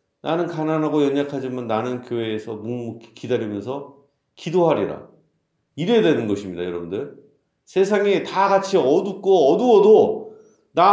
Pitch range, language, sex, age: 135-185 Hz, Korean, male, 40-59